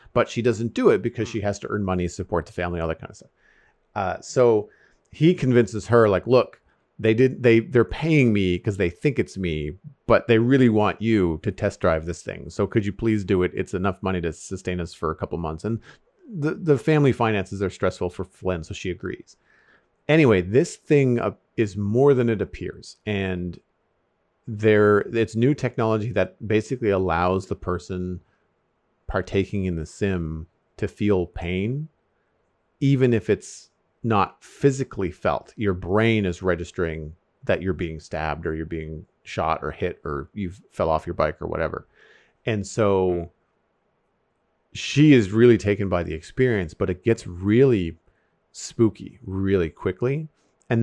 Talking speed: 170 wpm